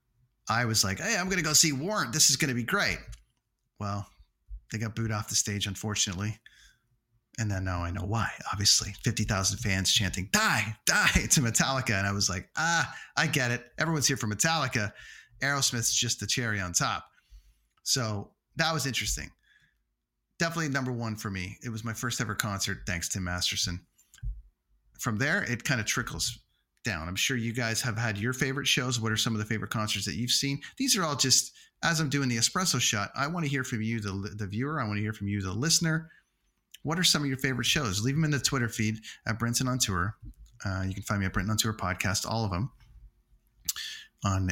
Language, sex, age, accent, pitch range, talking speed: English, male, 30-49, American, 100-130 Hz, 215 wpm